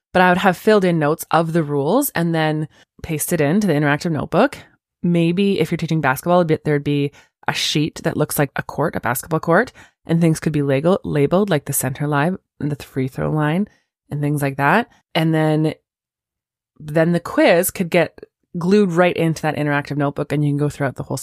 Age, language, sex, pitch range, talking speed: 20-39, English, female, 145-190 Hz, 210 wpm